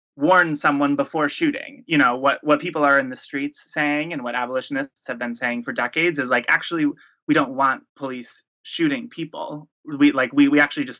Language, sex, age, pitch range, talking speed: English, male, 20-39, 120-195 Hz, 200 wpm